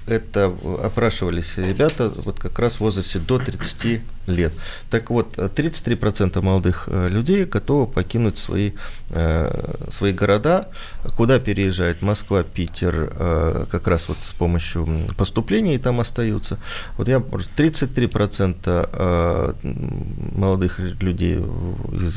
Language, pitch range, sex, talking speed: Russian, 90-120 Hz, male, 105 wpm